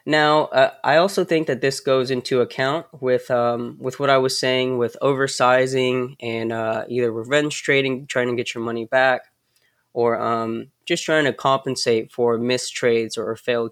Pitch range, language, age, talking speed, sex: 115-135 Hz, English, 20-39, 180 wpm, male